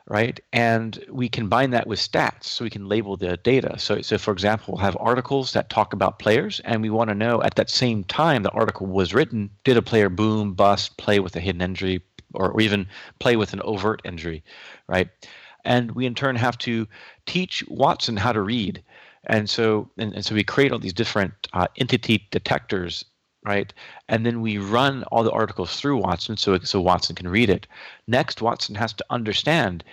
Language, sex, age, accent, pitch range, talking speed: English, male, 40-59, American, 95-120 Hz, 205 wpm